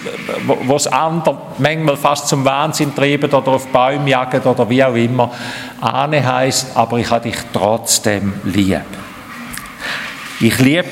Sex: male